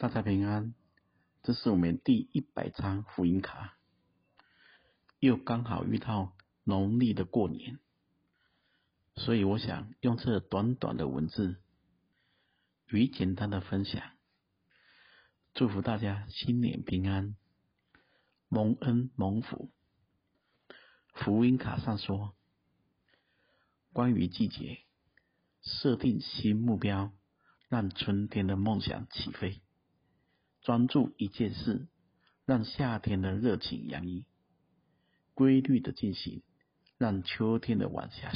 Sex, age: male, 50-69